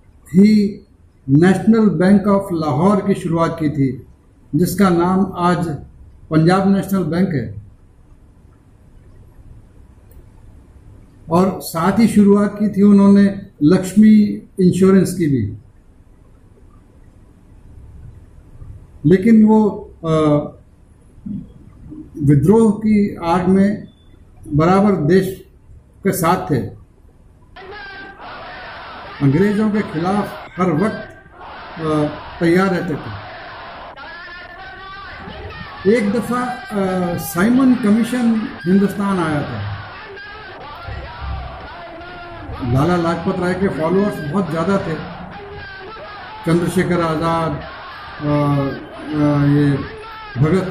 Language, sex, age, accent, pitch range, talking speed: Hindi, male, 50-69, native, 135-205 Hz, 75 wpm